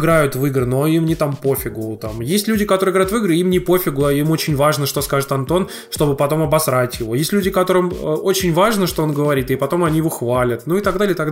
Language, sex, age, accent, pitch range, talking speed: Russian, male, 20-39, native, 135-180 Hz, 250 wpm